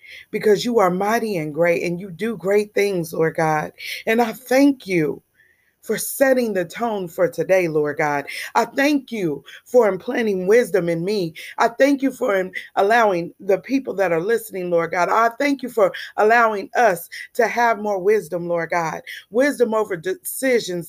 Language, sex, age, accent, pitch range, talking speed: English, female, 30-49, American, 190-265 Hz, 170 wpm